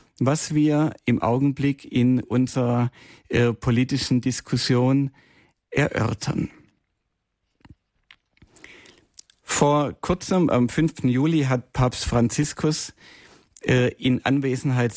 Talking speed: 85 wpm